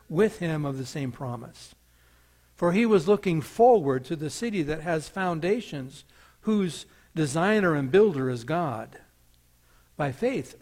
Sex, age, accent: male, 60-79, American